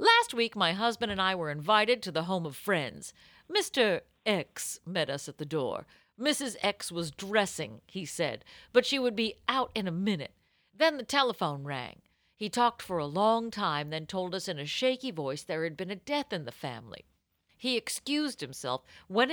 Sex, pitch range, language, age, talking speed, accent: female, 165-270 Hz, English, 50-69, 195 wpm, American